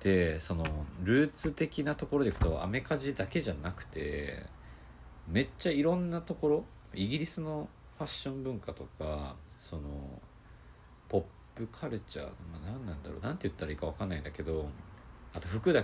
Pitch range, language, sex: 80-125 Hz, Japanese, male